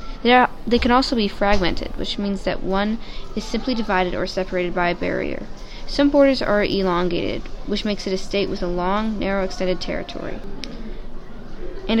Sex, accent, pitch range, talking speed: female, American, 185-230 Hz, 170 wpm